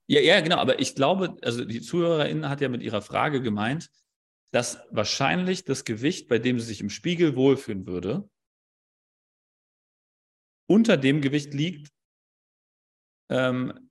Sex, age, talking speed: male, 30-49, 140 wpm